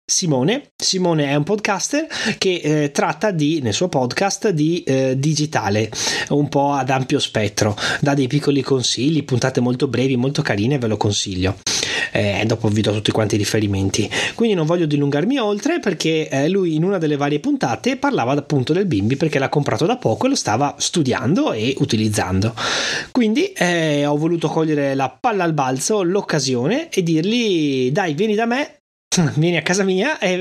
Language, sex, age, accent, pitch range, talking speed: Italian, male, 30-49, native, 135-200 Hz, 180 wpm